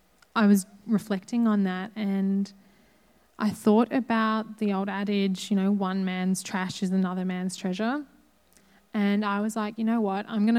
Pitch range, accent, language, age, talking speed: 185-210 Hz, Australian, English, 20-39, 170 wpm